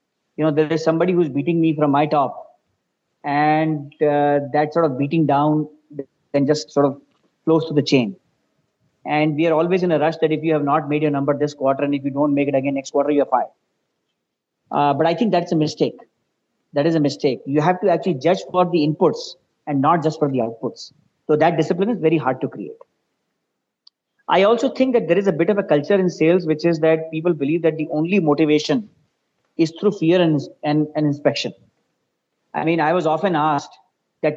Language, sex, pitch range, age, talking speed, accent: English, male, 150-170 Hz, 30-49, 215 wpm, Indian